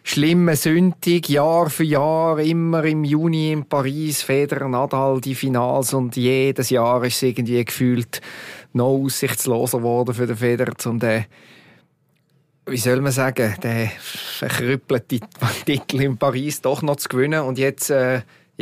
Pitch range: 130-160 Hz